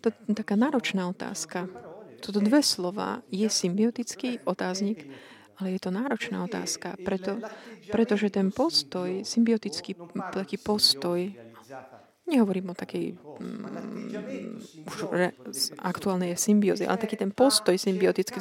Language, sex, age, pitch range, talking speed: Slovak, female, 30-49, 195-225 Hz, 115 wpm